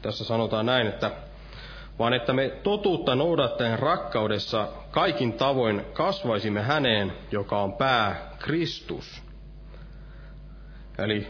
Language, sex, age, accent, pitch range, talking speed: Finnish, male, 30-49, native, 125-160 Hz, 100 wpm